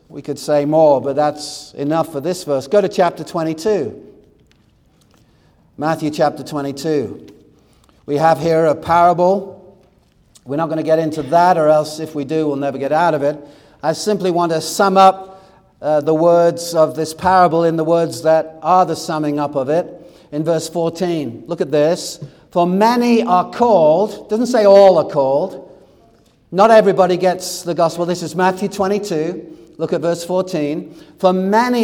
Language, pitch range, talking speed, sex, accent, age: English, 160-195 Hz, 175 wpm, male, British, 50-69